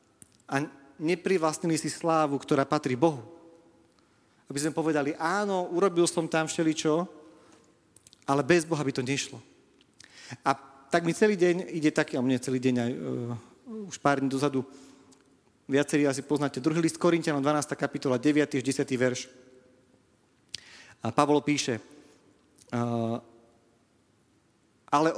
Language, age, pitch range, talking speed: Slovak, 40-59, 140-175 Hz, 130 wpm